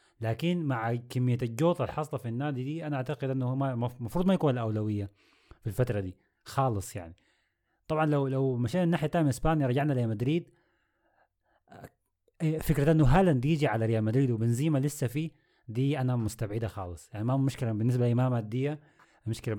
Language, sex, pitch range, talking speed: Arabic, male, 110-140 Hz, 160 wpm